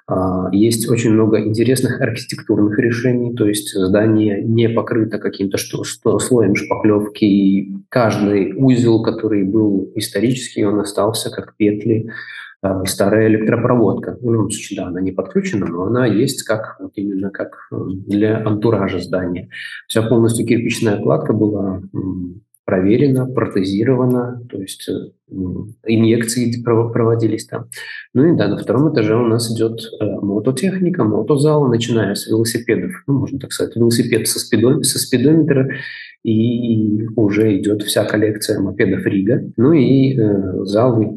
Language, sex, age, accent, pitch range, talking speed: Russian, male, 20-39, native, 100-120 Hz, 130 wpm